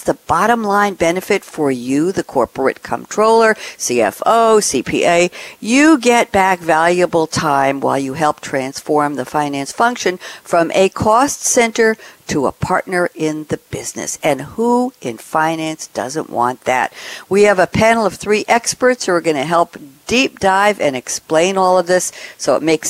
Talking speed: 160 wpm